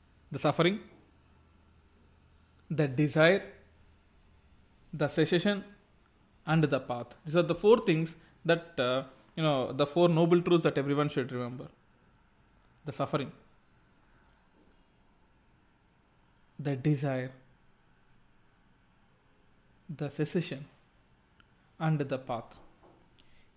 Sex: male